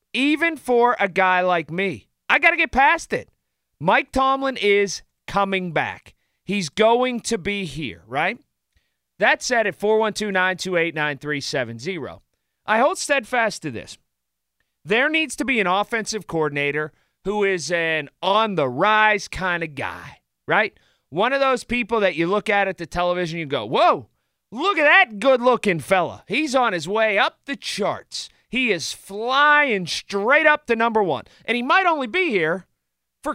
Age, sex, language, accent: 40-59, male, English, American